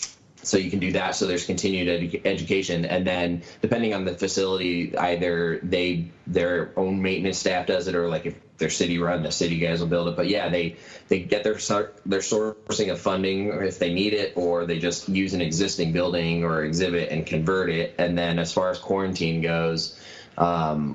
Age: 20-39